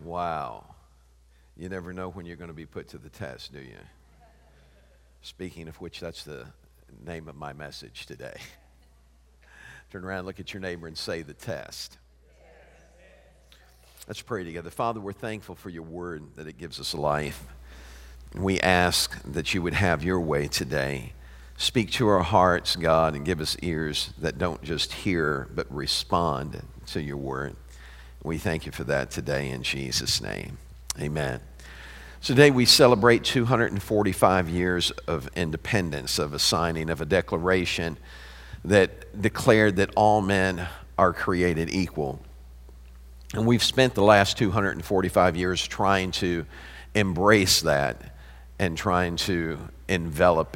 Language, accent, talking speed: English, American, 145 wpm